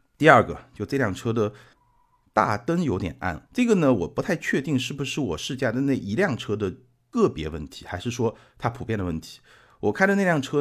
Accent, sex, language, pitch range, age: native, male, Chinese, 95-135 Hz, 50-69